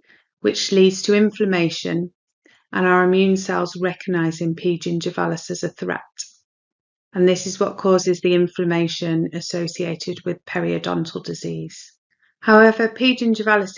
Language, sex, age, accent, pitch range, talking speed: English, female, 30-49, British, 170-205 Hz, 120 wpm